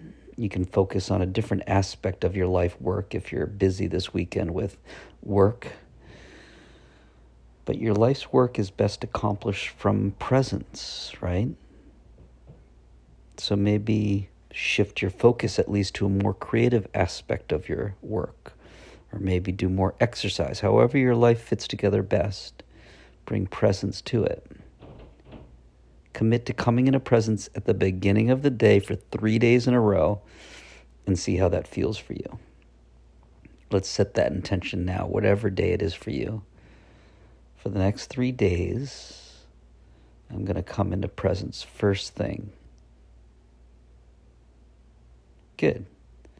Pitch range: 80-110 Hz